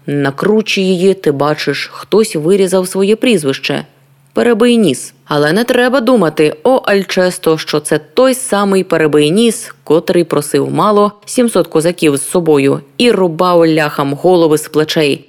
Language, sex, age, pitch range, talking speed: Ukrainian, female, 20-39, 150-210 Hz, 135 wpm